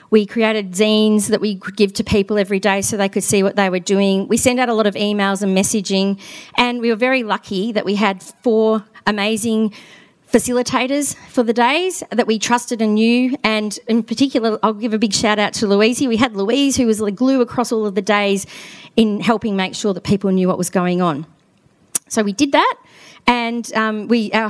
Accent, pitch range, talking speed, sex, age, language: Australian, 200-235 Hz, 215 wpm, female, 40-59, English